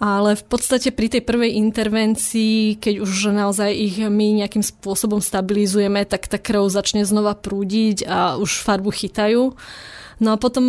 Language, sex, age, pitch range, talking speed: Slovak, female, 20-39, 200-220 Hz, 155 wpm